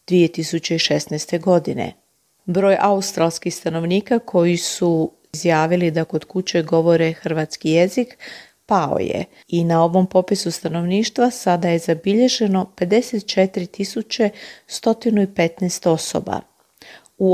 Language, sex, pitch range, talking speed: Croatian, female, 170-215 Hz, 95 wpm